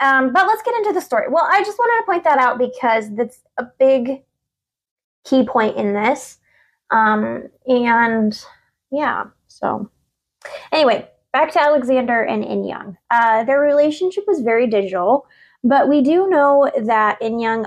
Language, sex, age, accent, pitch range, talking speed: English, female, 20-39, American, 200-265 Hz, 155 wpm